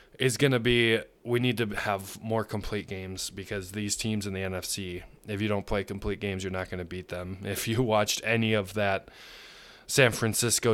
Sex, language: male, English